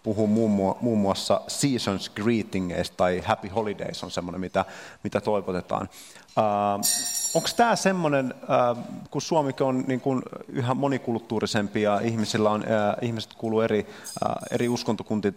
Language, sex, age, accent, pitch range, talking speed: Finnish, male, 30-49, native, 95-115 Hz, 130 wpm